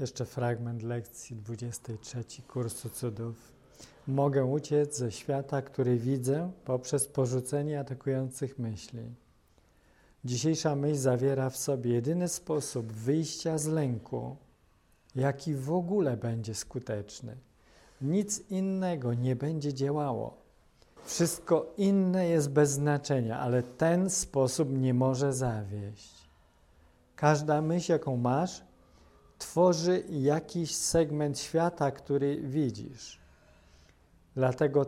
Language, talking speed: English, 100 wpm